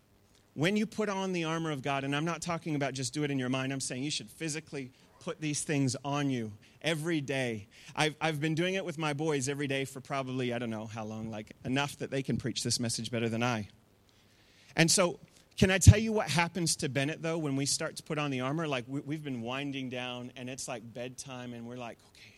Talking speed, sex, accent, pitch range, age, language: 245 wpm, male, American, 125-200 Hz, 30-49, English